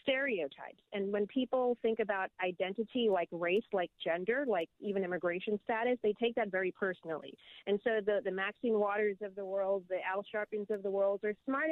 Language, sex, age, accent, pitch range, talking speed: English, female, 30-49, American, 195-235 Hz, 190 wpm